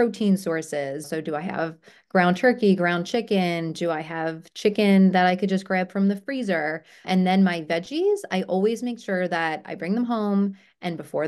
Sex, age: female, 30-49